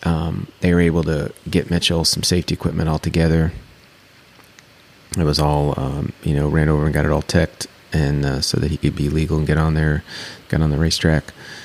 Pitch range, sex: 80-95 Hz, male